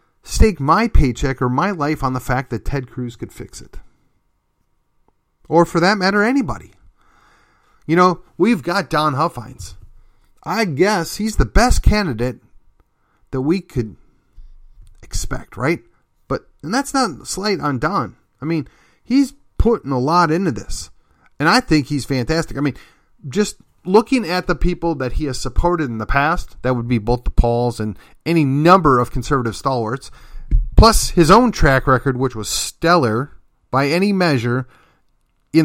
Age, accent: 40-59, American